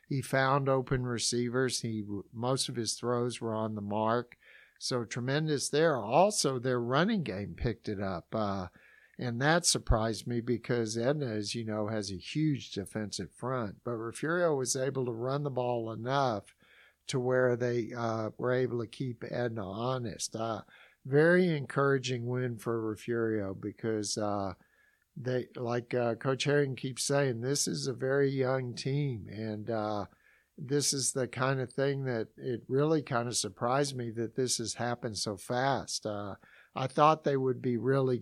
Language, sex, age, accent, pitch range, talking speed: English, male, 60-79, American, 110-135 Hz, 165 wpm